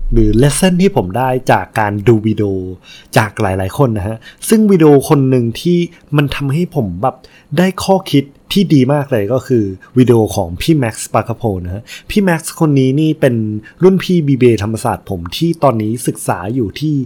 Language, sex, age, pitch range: Thai, male, 20-39, 110-155 Hz